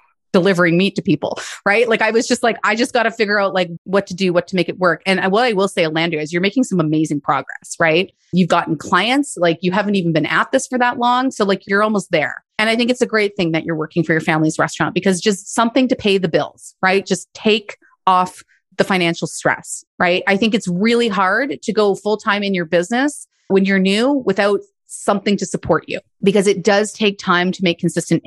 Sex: female